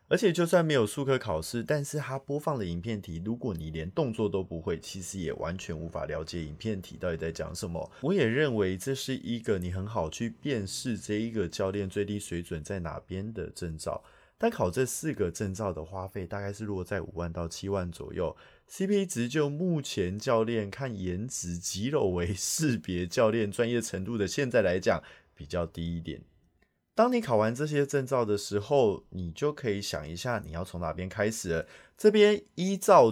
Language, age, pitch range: Chinese, 20-39, 90-135 Hz